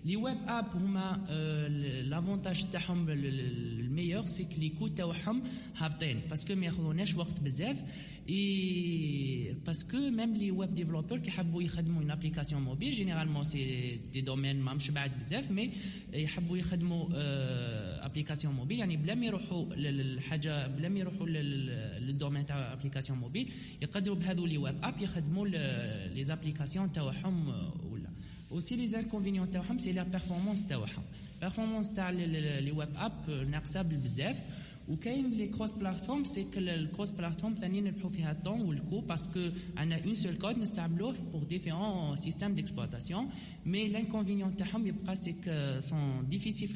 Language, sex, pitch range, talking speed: Arabic, male, 145-195 Hz, 120 wpm